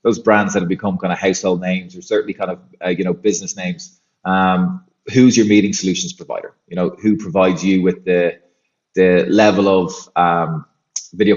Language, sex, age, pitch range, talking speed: English, male, 20-39, 95-110 Hz, 190 wpm